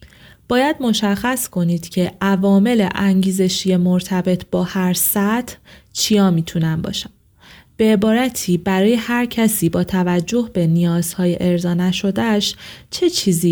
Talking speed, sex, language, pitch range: 115 wpm, female, Persian, 175-210 Hz